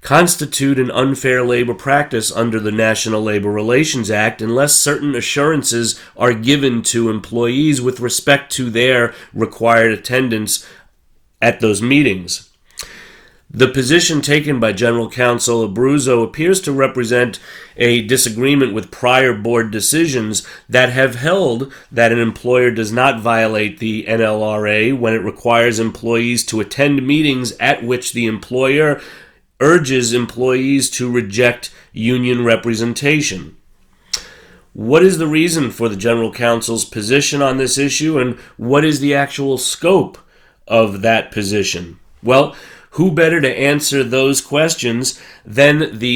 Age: 30-49